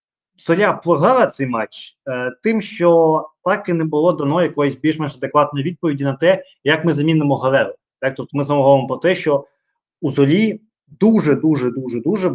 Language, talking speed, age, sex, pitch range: Ukrainian, 160 wpm, 20-39, male, 135-185 Hz